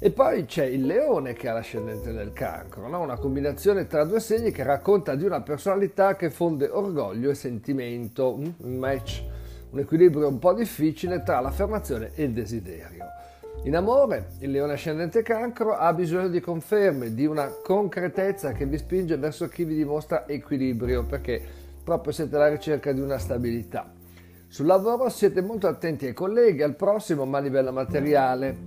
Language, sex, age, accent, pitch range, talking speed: Italian, male, 50-69, native, 135-190 Hz, 165 wpm